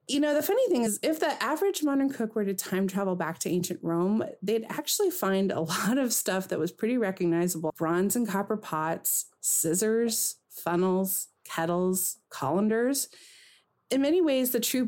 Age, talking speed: 30-49, 175 wpm